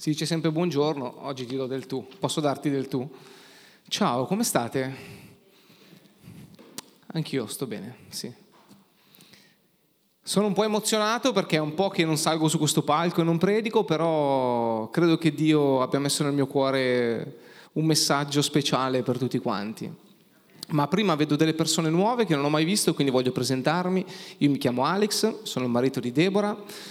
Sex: male